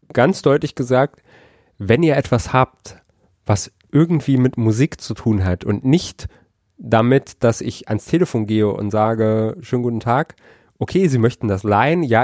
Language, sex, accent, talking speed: German, male, German, 160 wpm